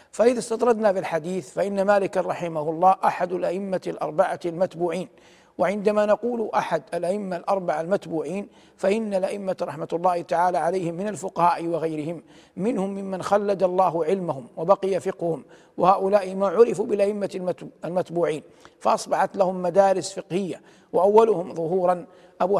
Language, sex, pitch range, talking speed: Arabic, male, 175-200 Hz, 120 wpm